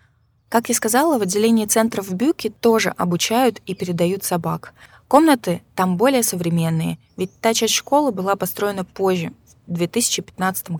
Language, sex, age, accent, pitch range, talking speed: Russian, female, 20-39, native, 165-215 Hz, 145 wpm